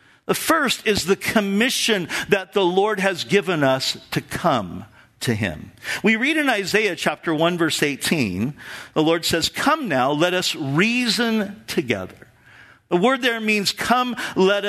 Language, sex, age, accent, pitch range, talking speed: English, male, 50-69, American, 165-235 Hz, 155 wpm